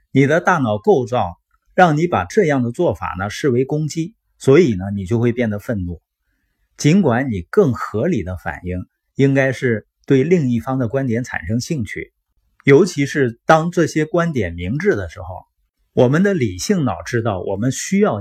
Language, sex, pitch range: Chinese, male, 100-150 Hz